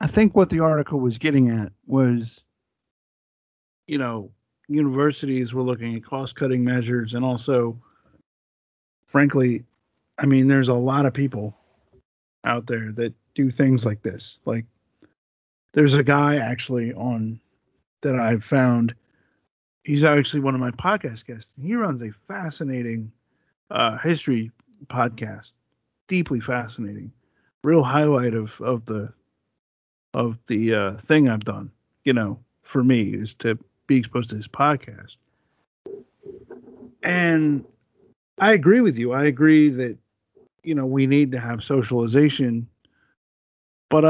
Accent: American